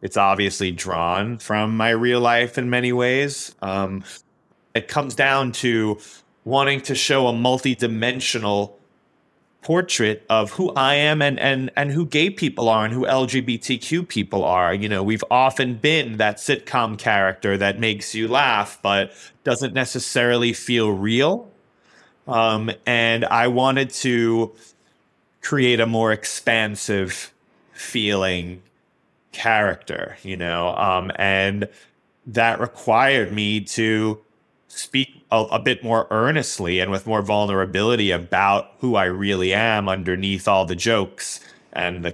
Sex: male